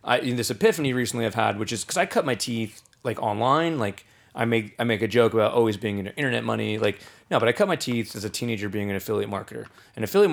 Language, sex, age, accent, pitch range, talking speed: English, male, 20-39, American, 110-130 Hz, 275 wpm